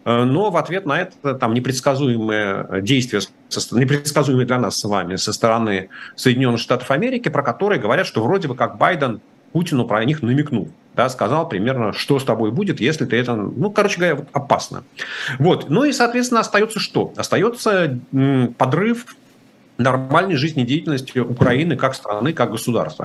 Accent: native